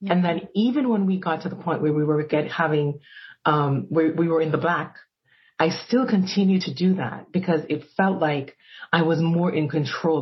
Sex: female